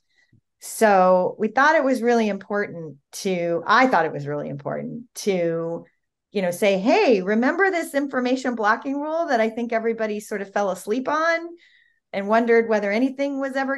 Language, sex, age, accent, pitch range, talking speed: English, female, 40-59, American, 165-225 Hz, 170 wpm